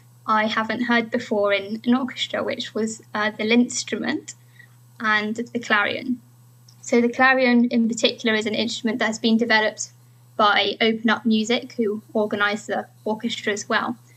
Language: English